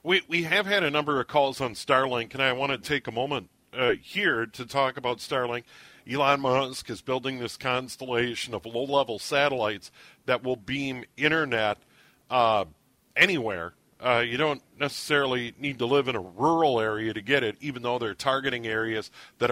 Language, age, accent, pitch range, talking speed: English, 50-69, American, 120-150 Hz, 180 wpm